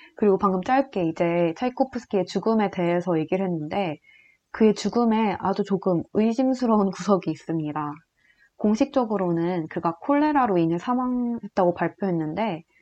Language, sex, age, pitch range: Korean, female, 20-39, 180-240 Hz